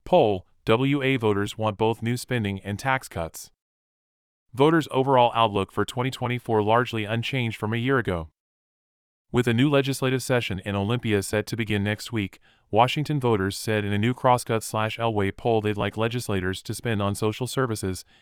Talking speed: 165 wpm